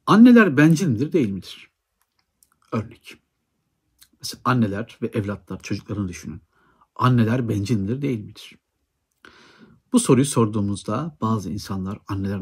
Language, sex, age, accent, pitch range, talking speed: Turkish, male, 60-79, native, 100-125 Hz, 110 wpm